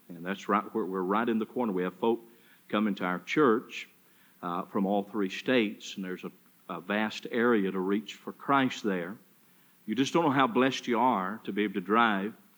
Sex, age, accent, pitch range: male, 50-69, American, 95-115 Hz